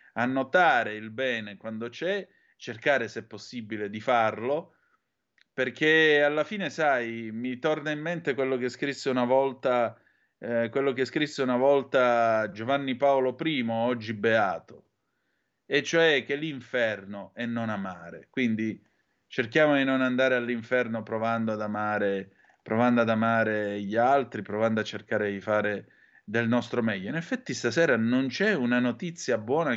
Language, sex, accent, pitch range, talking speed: Italian, male, native, 110-135 Hz, 145 wpm